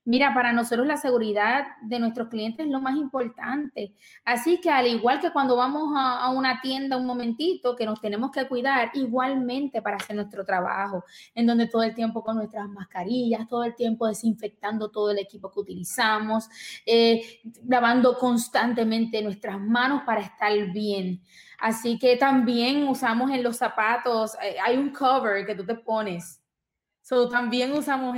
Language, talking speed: Spanish, 165 wpm